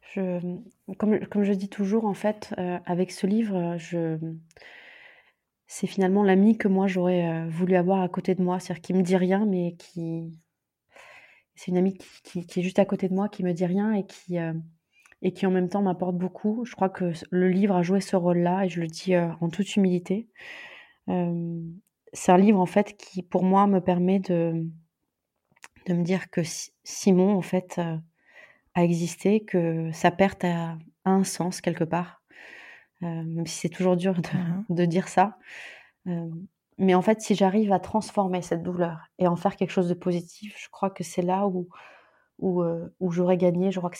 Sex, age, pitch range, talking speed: female, 20-39, 175-195 Hz, 200 wpm